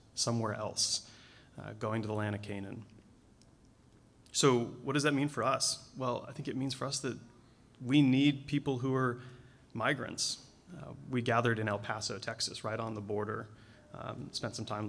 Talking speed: 180 wpm